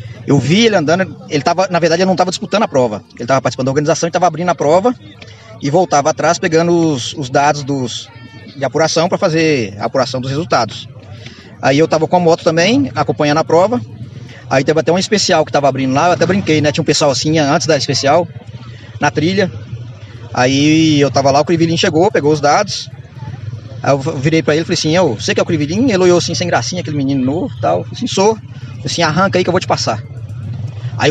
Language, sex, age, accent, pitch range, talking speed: Portuguese, male, 20-39, Brazilian, 125-185 Hz, 235 wpm